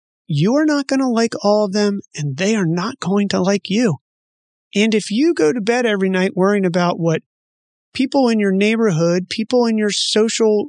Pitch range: 180-235 Hz